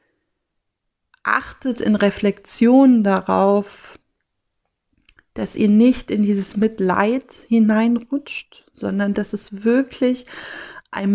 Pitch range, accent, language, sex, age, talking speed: 200-235 Hz, German, German, female, 40-59, 85 wpm